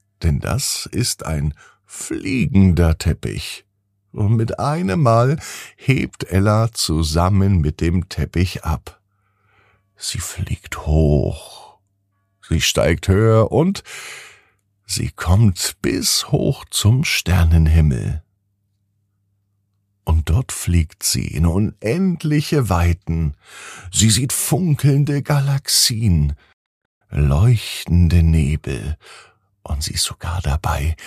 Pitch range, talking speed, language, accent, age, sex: 80-110 Hz, 95 wpm, German, German, 50-69, male